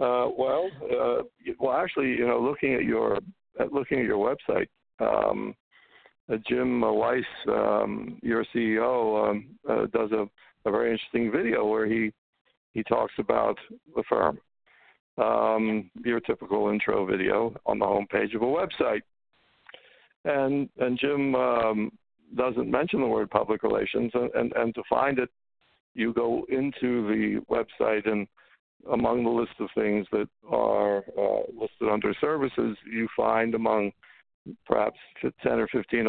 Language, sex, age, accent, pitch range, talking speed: English, male, 60-79, American, 110-125 Hz, 150 wpm